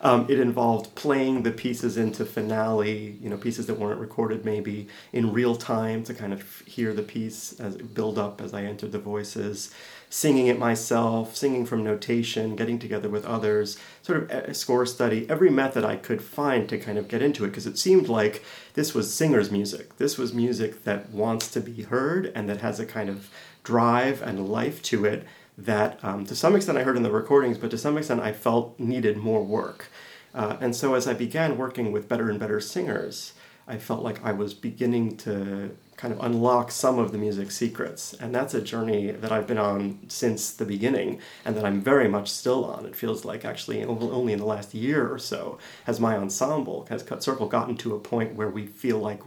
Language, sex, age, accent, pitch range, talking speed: English, male, 30-49, American, 105-120 Hz, 215 wpm